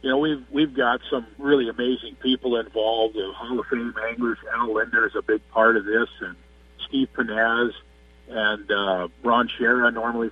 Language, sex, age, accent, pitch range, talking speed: English, male, 50-69, American, 105-135 Hz, 190 wpm